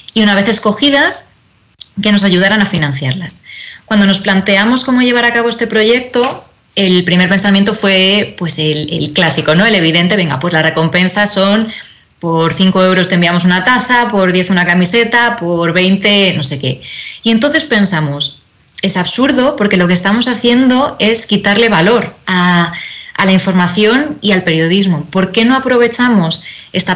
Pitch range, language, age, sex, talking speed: 175-225 Hz, Spanish, 20-39, female, 165 wpm